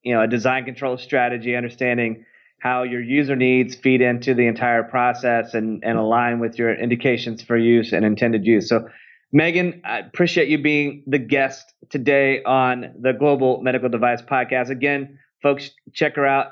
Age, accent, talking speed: 30-49, American, 170 wpm